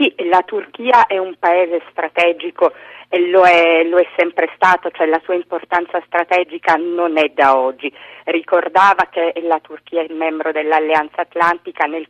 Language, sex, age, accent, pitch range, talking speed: Italian, female, 40-59, native, 160-195 Hz, 165 wpm